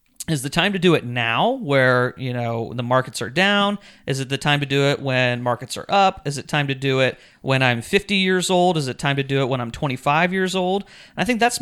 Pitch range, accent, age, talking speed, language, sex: 130-165 Hz, American, 30-49, 265 wpm, English, male